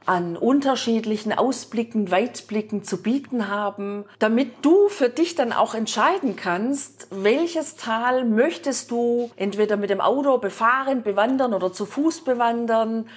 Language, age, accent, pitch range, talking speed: German, 40-59, German, 205-255 Hz, 130 wpm